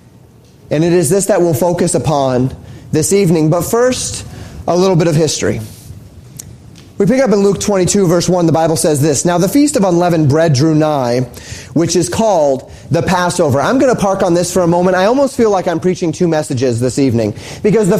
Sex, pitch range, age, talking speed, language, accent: male, 150-190 Hz, 30-49, 210 wpm, English, American